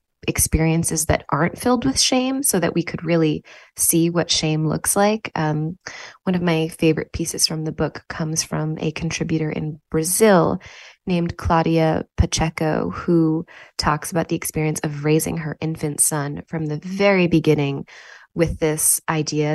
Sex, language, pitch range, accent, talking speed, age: female, English, 155-190 Hz, American, 155 wpm, 20-39